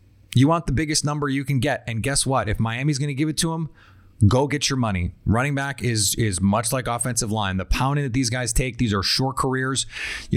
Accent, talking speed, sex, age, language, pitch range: American, 245 wpm, male, 30-49, English, 110-130 Hz